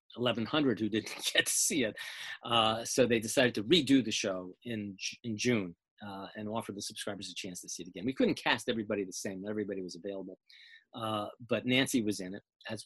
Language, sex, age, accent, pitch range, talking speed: English, male, 40-59, American, 105-125 Hz, 210 wpm